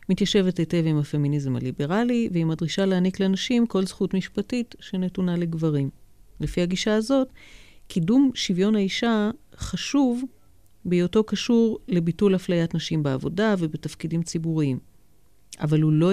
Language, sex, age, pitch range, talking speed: Hebrew, female, 40-59, 155-195 Hz, 120 wpm